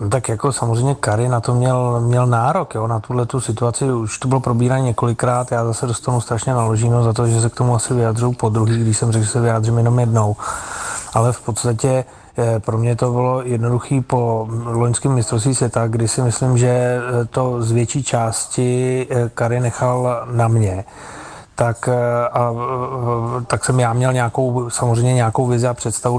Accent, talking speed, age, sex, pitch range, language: native, 175 wpm, 30-49, male, 120-130 Hz, Czech